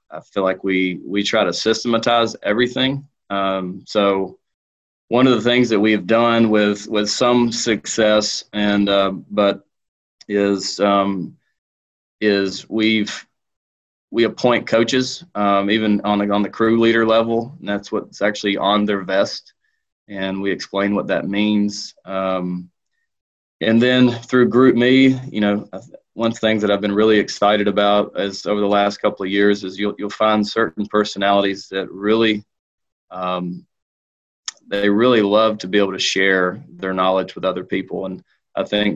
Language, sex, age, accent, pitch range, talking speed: English, male, 20-39, American, 95-105 Hz, 160 wpm